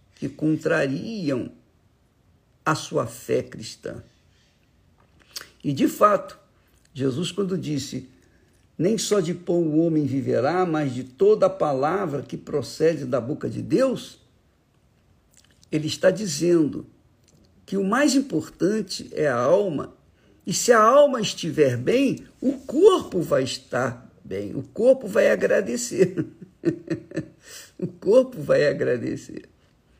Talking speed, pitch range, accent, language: 120 wpm, 135-195 Hz, Brazilian, Portuguese